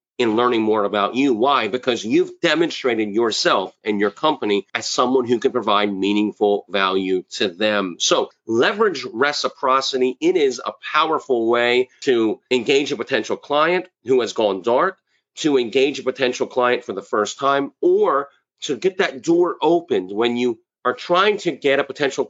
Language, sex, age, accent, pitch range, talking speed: English, male, 40-59, American, 115-180 Hz, 165 wpm